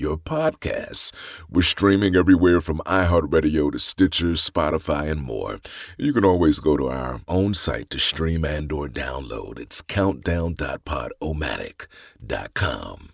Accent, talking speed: American, 125 wpm